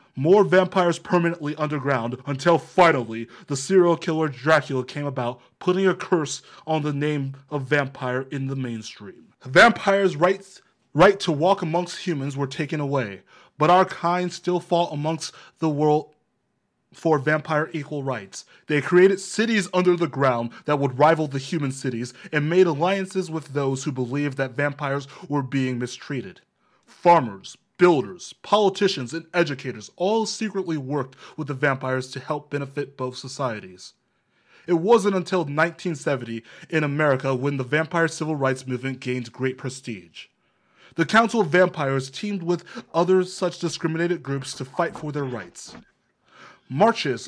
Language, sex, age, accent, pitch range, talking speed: English, male, 20-39, American, 135-180 Hz, 145 wpm